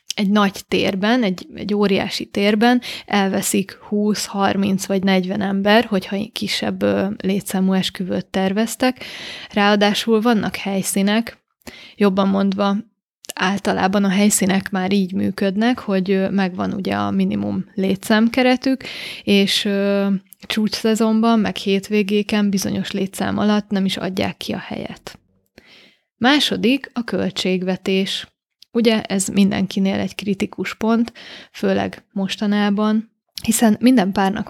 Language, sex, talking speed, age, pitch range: Hungarian, female, 110 wpm, 20-39, 190-215 Hz